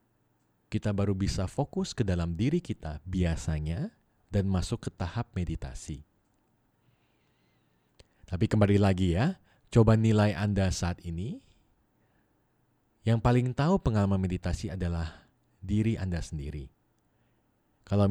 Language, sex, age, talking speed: Indonesian, male, 30-49, 110 wpm